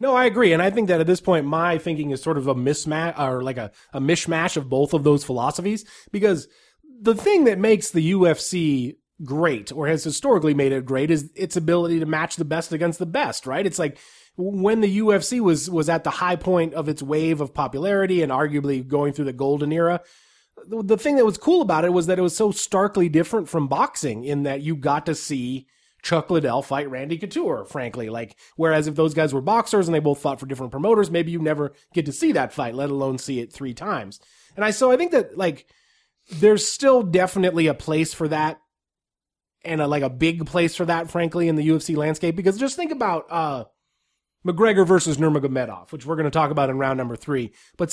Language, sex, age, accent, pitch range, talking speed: English, male, 30-49, American, 145-185 Hz, 220 wpm